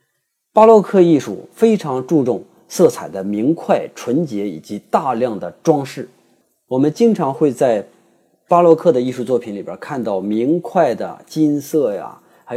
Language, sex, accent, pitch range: Chinese, male, native, 120-185 Hz